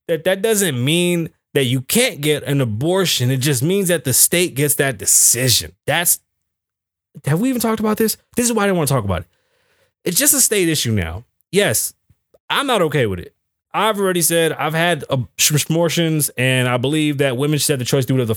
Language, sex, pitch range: English, male, 125-180 Hz